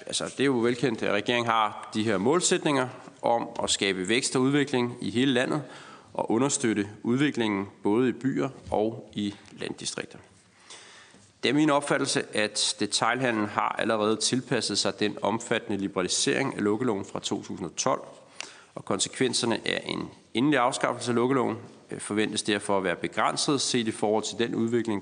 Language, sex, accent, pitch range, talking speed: Danish, male, native, 100-125 Hz, 155 wpm